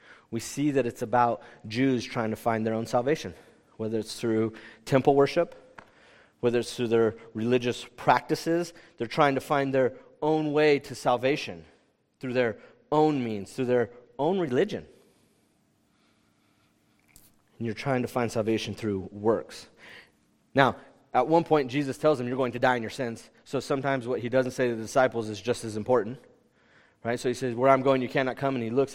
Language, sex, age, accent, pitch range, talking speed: English, male, 30-49, American, 120-155 Hz, 180 wpm